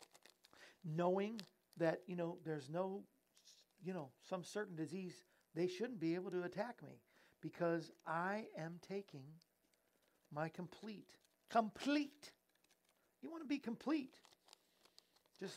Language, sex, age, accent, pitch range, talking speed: English, male, 50-69, American, 145-195 Hz, 120 wpm